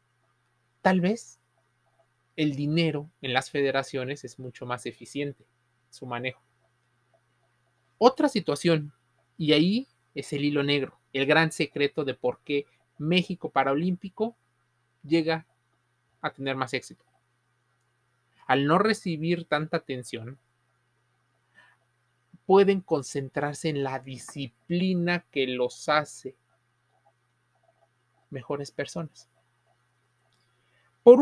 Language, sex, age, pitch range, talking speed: Spanish, male, 30-49, 130-165 Hz, 95 wpm